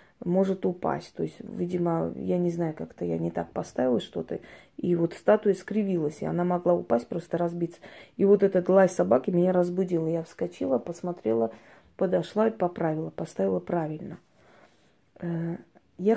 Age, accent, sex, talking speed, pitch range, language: 20-39, native, female, 150 wpm, 170-195 Hz, Russian